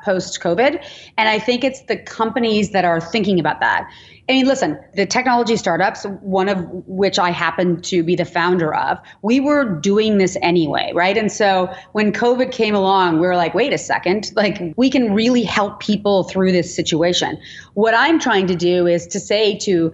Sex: female